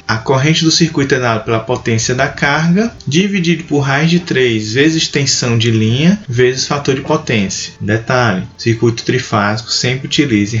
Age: 20-39